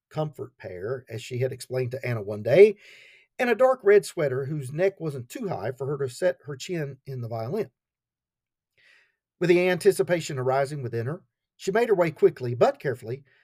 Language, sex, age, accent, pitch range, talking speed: English, male, 50-69, American, 130-185 Hz, 190 wpm